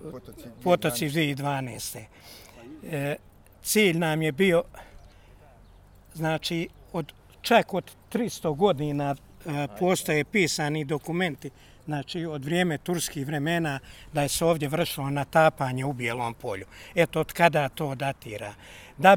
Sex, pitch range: male, 140-180 Hz